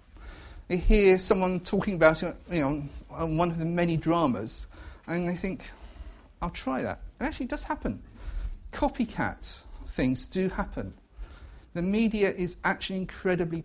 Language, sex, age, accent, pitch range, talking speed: English, male, 40-59, British, 125-195 Hz, 145 wpm